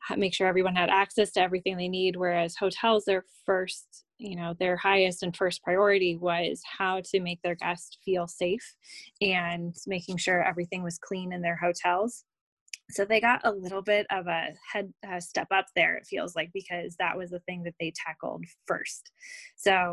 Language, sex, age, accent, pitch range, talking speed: English, female, 20-39, American, 175-195 Hz, 185 wpm